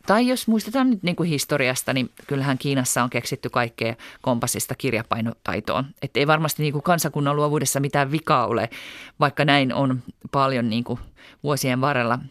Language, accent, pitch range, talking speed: Finnish, native, 130-185 Hz, 150 wpm